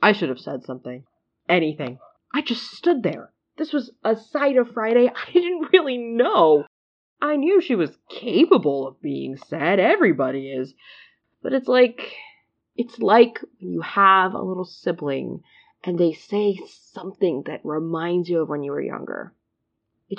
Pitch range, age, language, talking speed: 150-245 Hz, 20-39, English, 160 wpm